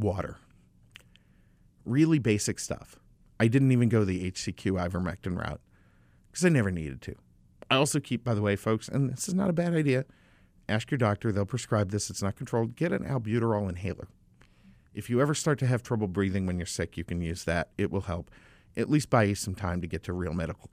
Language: English